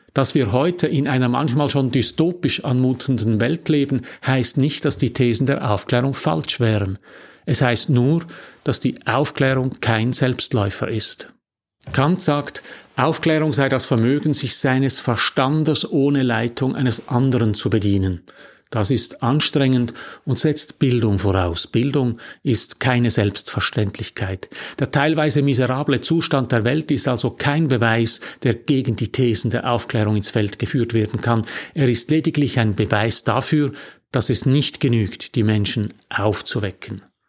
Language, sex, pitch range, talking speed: German, male, 120-150 Hz, 145 wpm